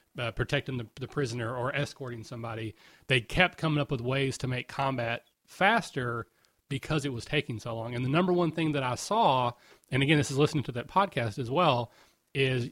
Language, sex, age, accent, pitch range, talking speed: English, male, 30-49, American, 130-165 Hz, 205 wpm